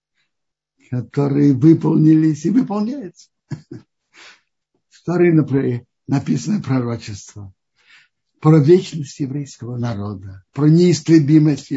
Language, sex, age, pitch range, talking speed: Russian, male, 60-79, 125-165 Hz, 70 wpm